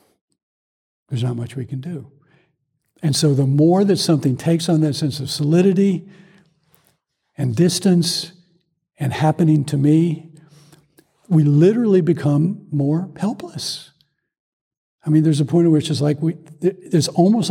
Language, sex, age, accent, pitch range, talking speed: English, male, 60-79, American, 135-160 Hz, 135 wpm